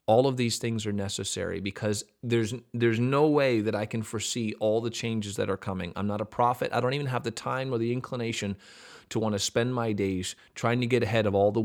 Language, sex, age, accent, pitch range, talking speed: English, male, 30-49, American, 100-125 Hz, 240 wpm